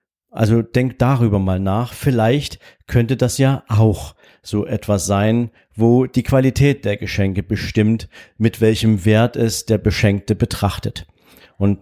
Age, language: 50-69, German